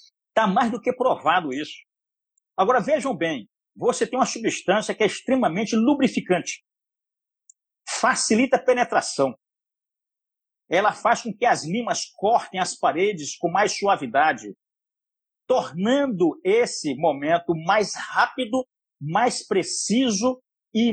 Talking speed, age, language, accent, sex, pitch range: 115 wpm, 50-69, Portuguese, Brazilian, male, 190-265 Hz